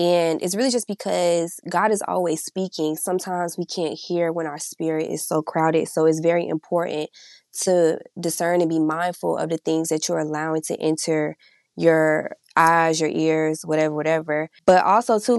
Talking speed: 175 wpm